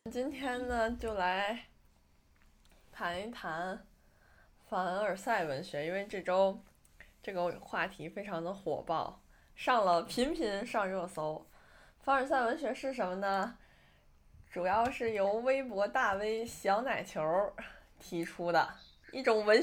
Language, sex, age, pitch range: Chinese, female, 20-39, 185-260 Hz